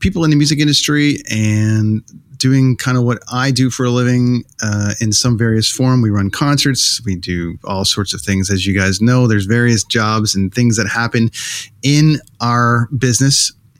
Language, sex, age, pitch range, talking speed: English, male, 30-49, 100-130 Hz, 185 wpm